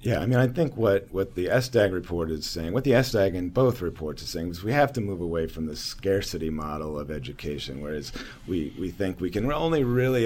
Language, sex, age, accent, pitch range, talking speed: English, male, 40-59, American, 85-110 Hz, 235 wpm